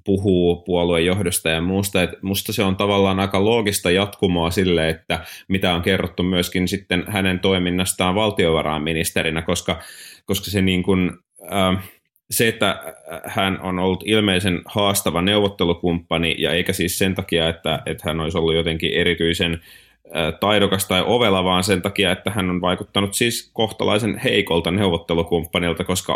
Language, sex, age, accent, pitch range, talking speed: Finnish, male, 30-49, native, 80-95 Hz, 145 wpm